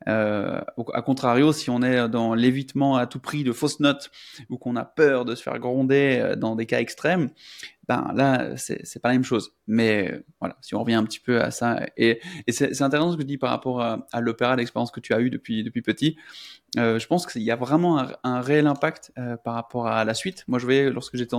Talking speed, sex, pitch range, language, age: 255 wpm, male, 115-145 Hz, French, 20-39